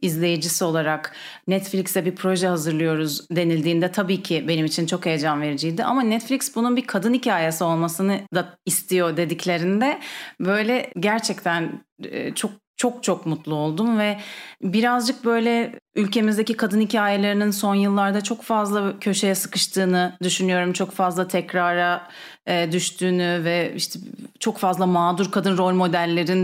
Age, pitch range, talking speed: 30-49, 180-225 Hz, 130 wpm